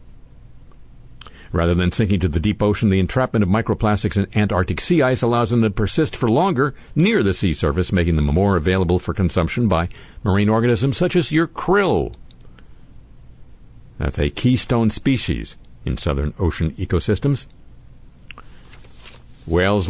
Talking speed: 140 wpm